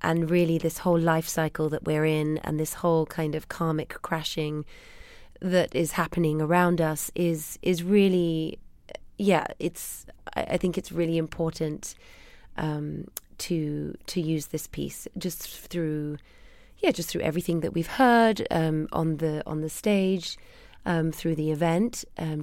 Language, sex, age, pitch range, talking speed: English, female, 30-49, 160-195 Hz, 155 wpm